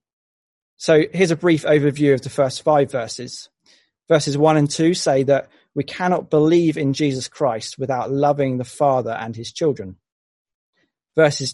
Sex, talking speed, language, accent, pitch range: male, 155 wpm, English, British, 130-155 Hz